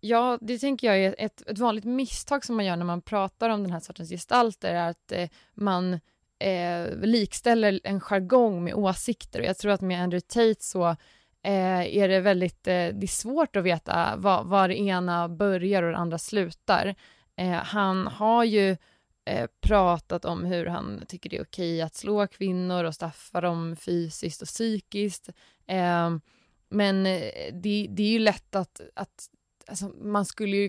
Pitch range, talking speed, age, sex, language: 170-200 Hz, 175 wpm, 20-39, female, Swedish